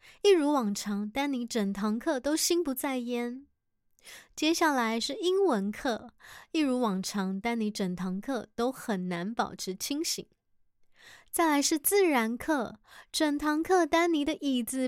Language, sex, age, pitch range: Chinese, female, 20-39, 215-320 Hz